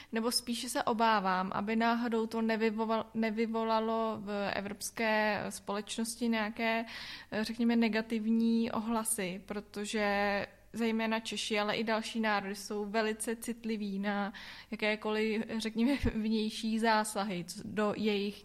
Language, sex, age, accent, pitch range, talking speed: Czech, female, 20-39, native, 200-220 Hz, 105 wpm